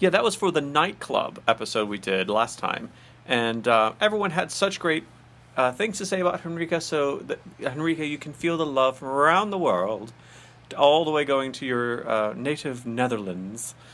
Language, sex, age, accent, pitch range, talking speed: English, male, 40-59, American, 125-190 Hz, 190 wpm